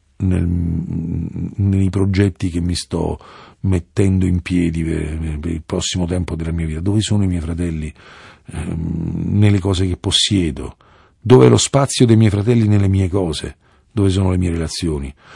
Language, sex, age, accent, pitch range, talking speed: Italian, male, 50-69, native, 75-100 Hz, 165 wpm